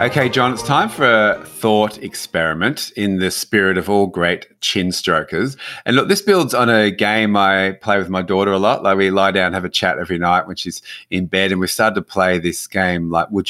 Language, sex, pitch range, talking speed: English, male, 85-105 Hz, 230 wpm